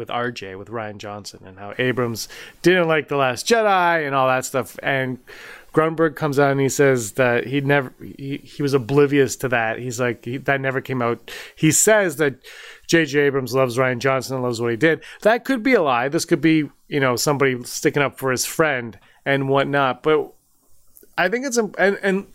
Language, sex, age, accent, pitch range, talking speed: English, male, 30-49, American, 130-165 Hz, 205 wpm